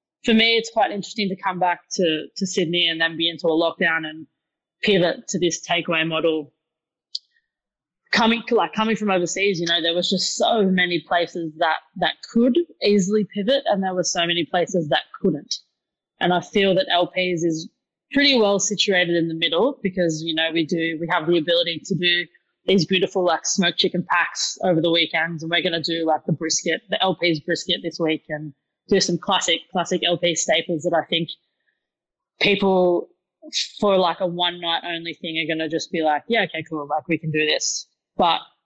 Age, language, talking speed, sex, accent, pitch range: 20-39, English, 195 wpm, female, Australian, 165-190 Hz